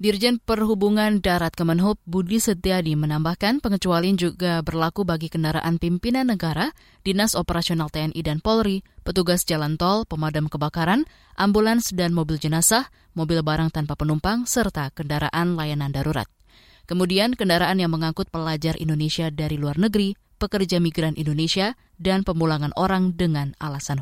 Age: 20-39